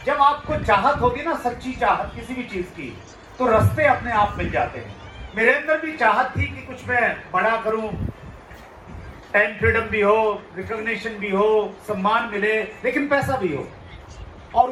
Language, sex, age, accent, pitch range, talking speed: Hindi, male, 40-59, native, 205-245 Hz, 170 wpm